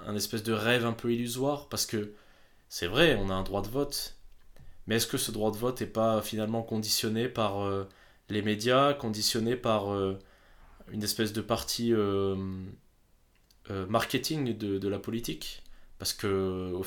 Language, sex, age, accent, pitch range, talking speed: French, male, 20-39, French, 95-115 Hz, 180 wpm